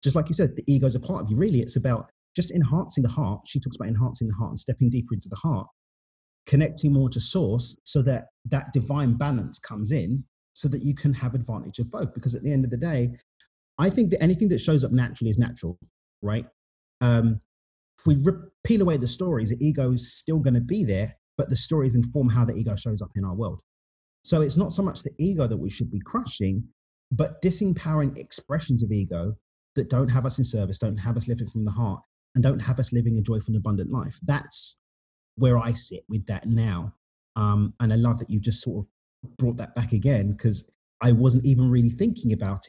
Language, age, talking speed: English, 30-49, 230 wpm